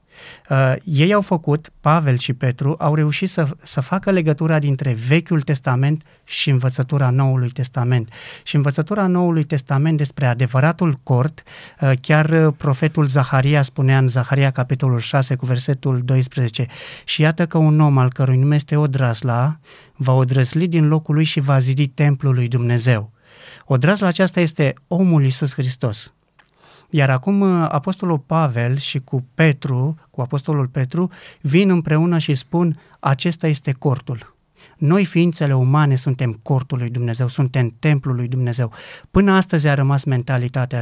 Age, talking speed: 30-49, 145 wpm